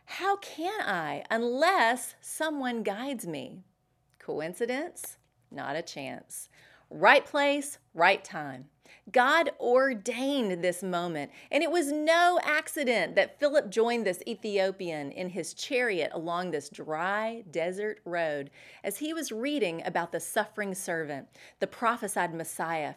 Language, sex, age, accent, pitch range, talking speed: English, female, 30-49, American, 175-265 Hz, 125 wpm